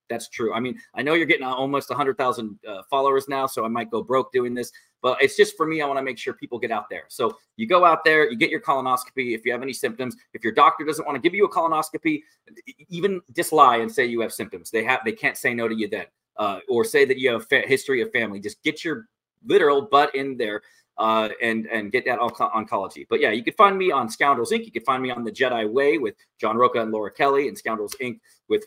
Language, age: English, 30-49